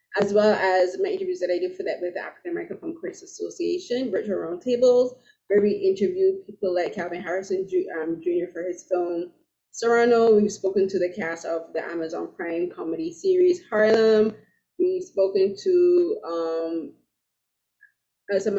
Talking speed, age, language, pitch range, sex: 155 wpm, 20-39, English, 190-245 Hz, female